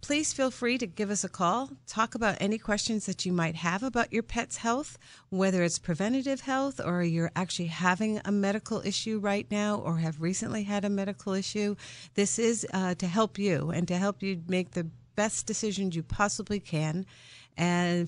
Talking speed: 195 wpm